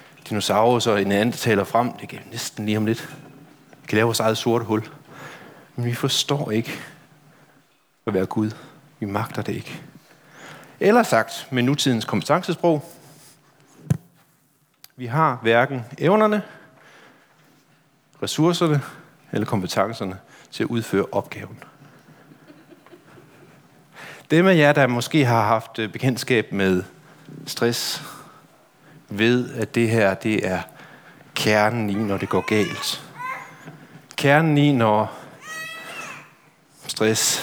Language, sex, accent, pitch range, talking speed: Danish, male, native, 115-155 Hz, 115 wpm